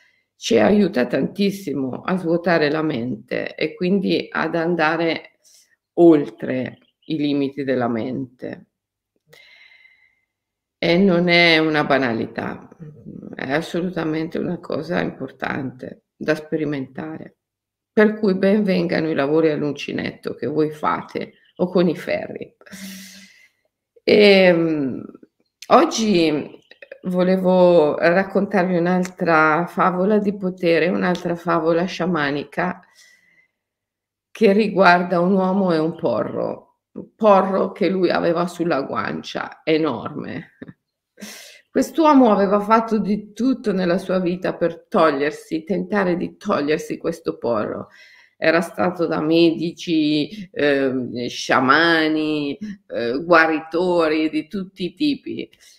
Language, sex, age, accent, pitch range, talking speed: Italian, female, 50-69, native, 155-195 Hz, 100 wpm